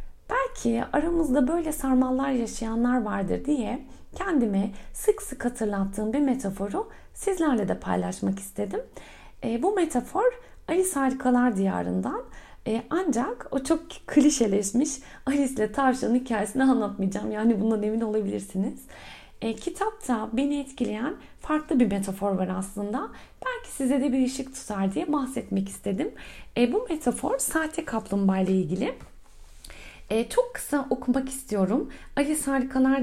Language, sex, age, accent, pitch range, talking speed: Turkish, female, 40-59, native, 210-285 Hz, 125 wpm